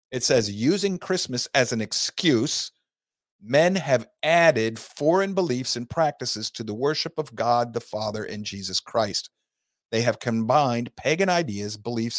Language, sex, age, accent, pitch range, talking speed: English, male, 50-69, American, 110-145 Hz, 150 wpm